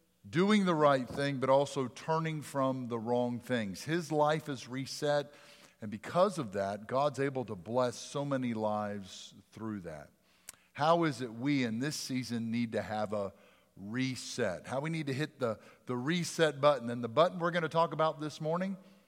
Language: English